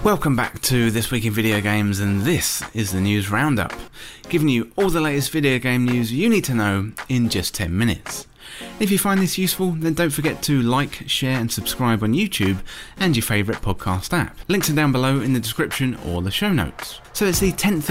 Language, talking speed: English, 220 wpm